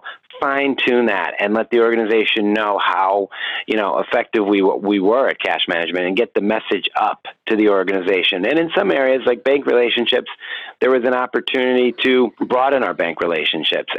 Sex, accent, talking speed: male, American, 180 wpm